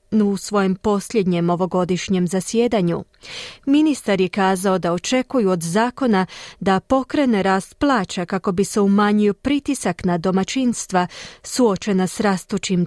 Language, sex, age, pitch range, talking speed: Croatian, female, 40-59, 185-235 Hz, 120 wpm